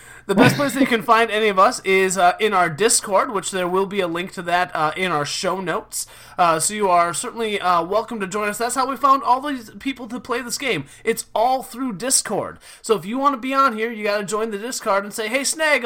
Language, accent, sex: English, American, male